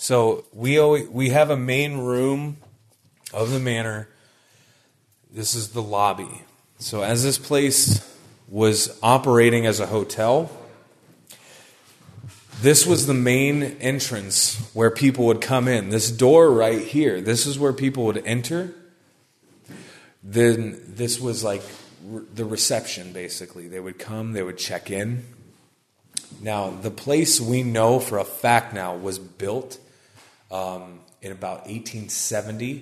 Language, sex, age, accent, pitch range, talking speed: English, male, 30-49, American, 100-130 Hz, 135 wpm